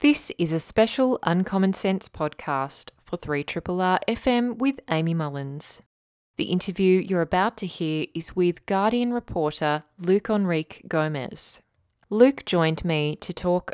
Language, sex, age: English, female, 20-39